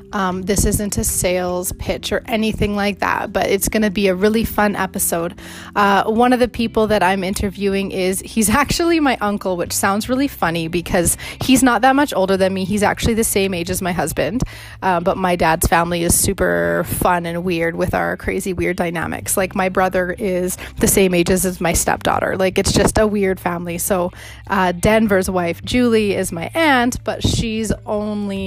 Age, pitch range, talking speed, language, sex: 20-39, 180-215 Hz, 200 wpm, English, female